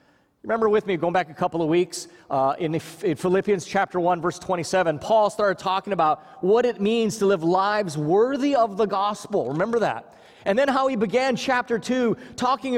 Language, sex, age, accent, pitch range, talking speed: English, male, 30-49, American, 150-230 Hz, 190 wpm